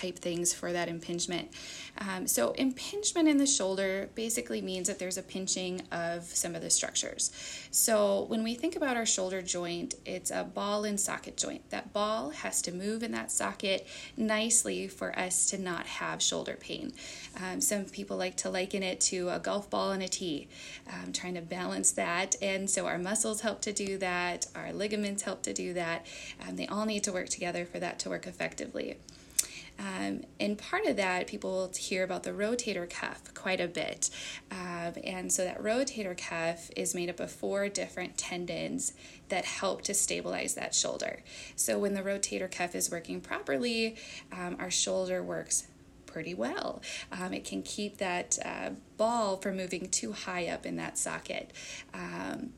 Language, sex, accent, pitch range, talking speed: English, female, American, 175-210 Hz, 185 wpm